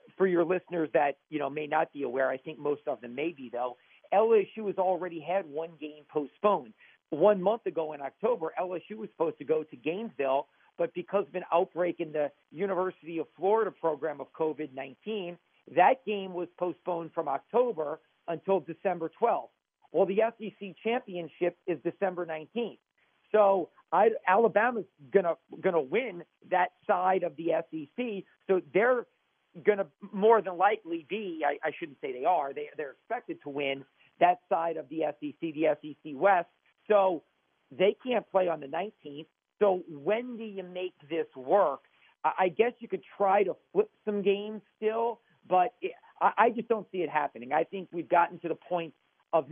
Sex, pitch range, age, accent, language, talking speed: male, 160-200 Hz, 50-69, American, English, 175 wpm